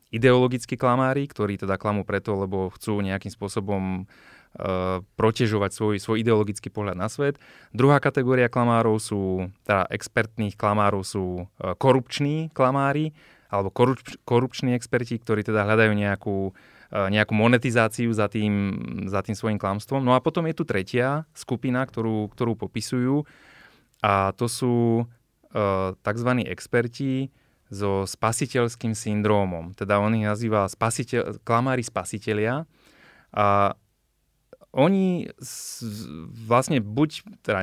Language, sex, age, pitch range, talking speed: Slovak, male, 20-39, 105-130 Hz, 125 wpm